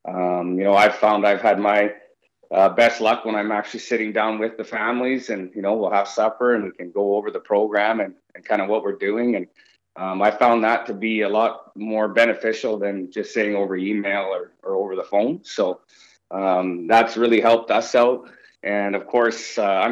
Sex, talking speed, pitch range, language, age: male, 215 wpm, 100-120 Hz, English, 30-49